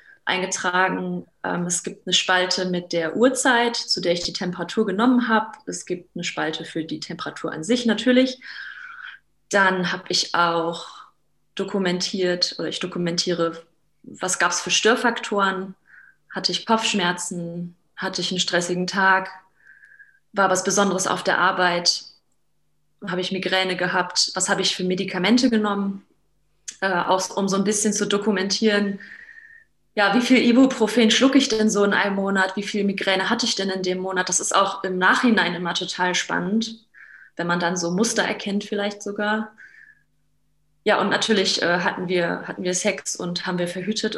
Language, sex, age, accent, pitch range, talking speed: German, female, 20-39, German, 180-210 Hz, 160 wpm